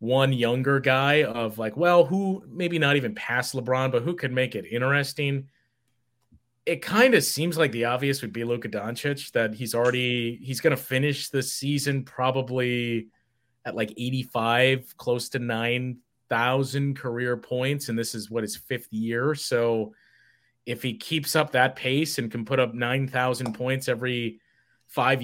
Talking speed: 165 wpm